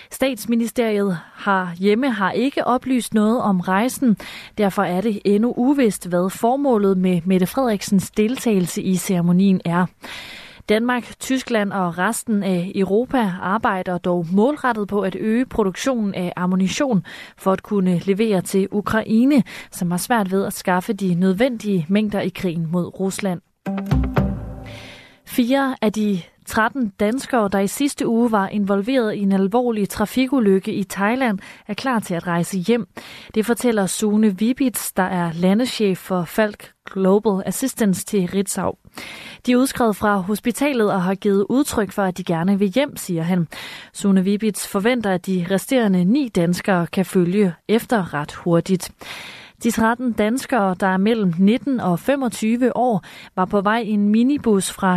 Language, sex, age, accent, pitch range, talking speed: Danish, female, 30-49, native, 185-230 Hz, 155 wpm